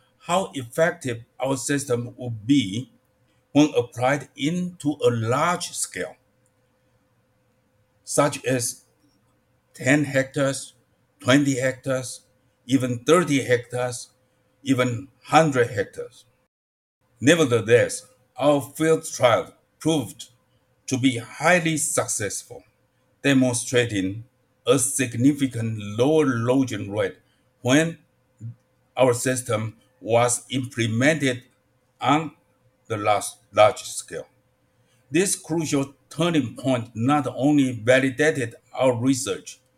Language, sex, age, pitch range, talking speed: English, male, 60-79, 125-145 Hz, 85 wpm